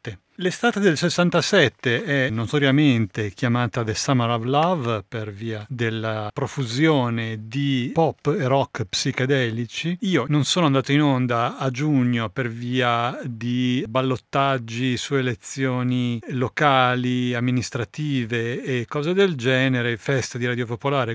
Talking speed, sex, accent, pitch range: 120 wpm, male, native, 120-140 Hz